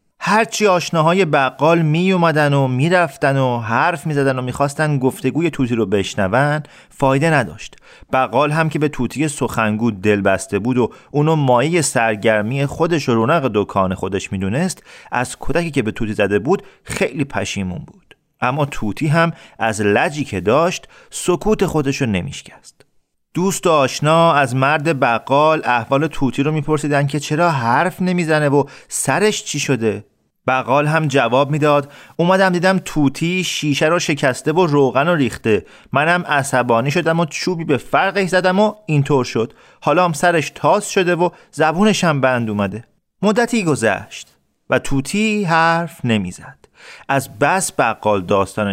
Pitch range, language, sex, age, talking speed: 115-165 Hz, Persian, male, 40-59, 150 wpm